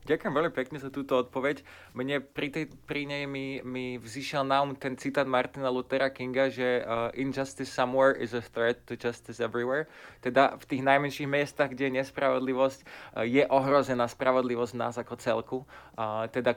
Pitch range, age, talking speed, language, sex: 125-150 Hz, 20-39, 175 wpm, Slovak, male